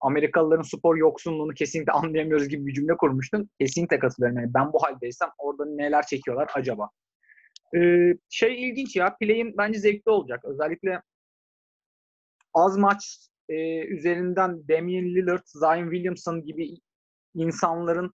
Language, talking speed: Turkish, 125 wpm